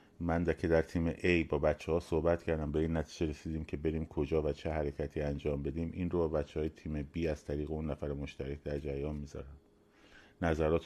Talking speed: 200 wpm